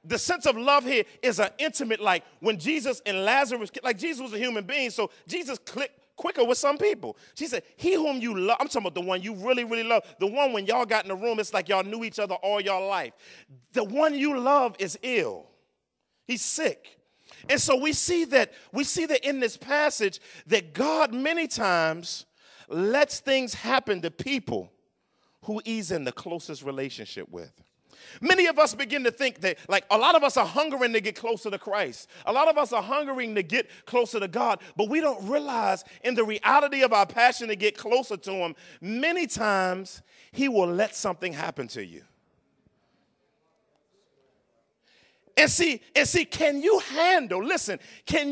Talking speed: 195 wpm